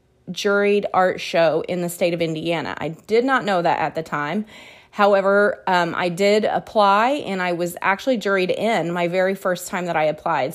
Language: English